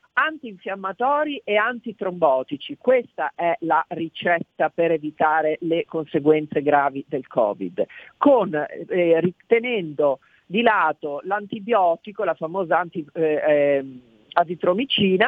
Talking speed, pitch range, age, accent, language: 90 wpm, 170-230 Hz, 50-69, native, Italian